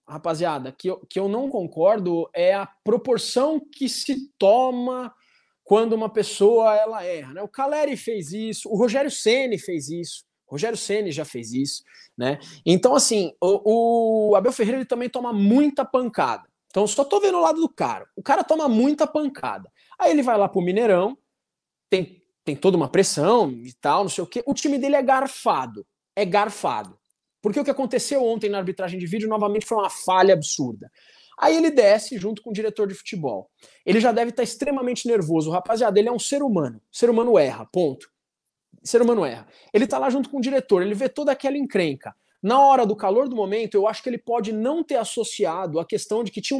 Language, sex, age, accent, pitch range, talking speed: Portuguese, male, 20-39, Brazilian, 200-270 Hz, 200 wpm